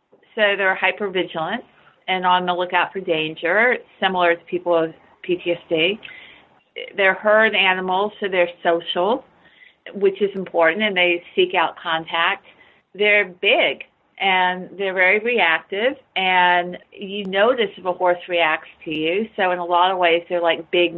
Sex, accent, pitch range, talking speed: female, American, 175-215 Hz, 150 wpm